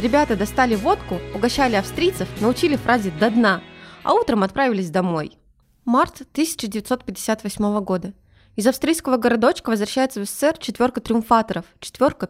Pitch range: 200-270 Hz